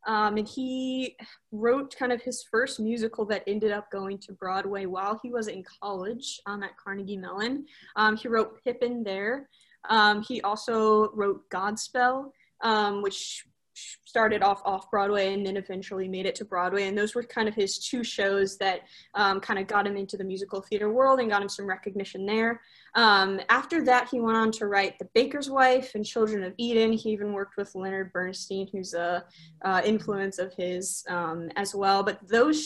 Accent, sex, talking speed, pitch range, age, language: American, female, 190 wpm, 195-225 Hz, 10-29, English